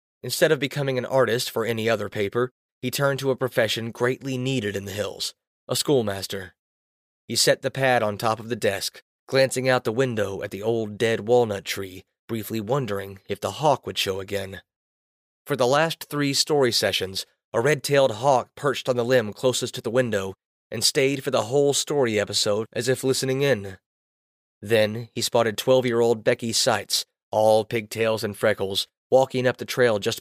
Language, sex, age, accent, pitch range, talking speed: English, male, 30-49, American, 100-135 Hz, 180 wpm